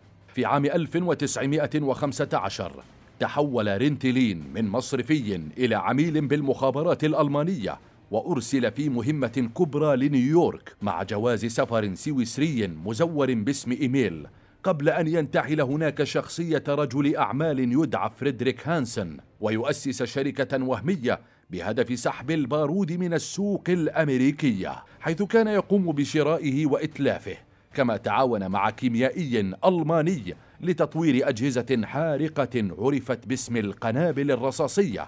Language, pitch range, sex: Arabic, 125-155 Hz, male